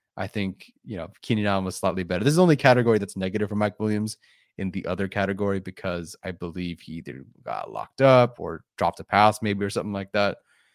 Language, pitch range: English, 95-115 Hz